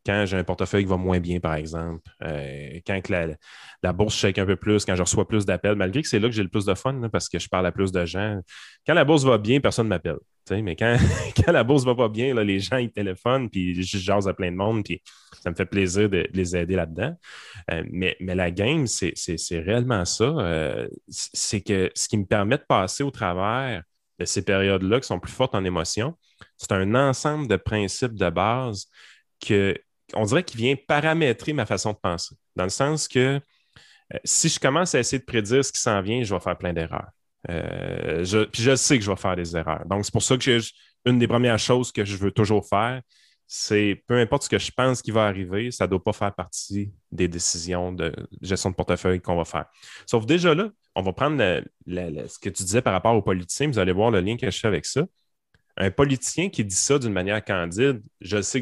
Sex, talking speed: male, 245 wpm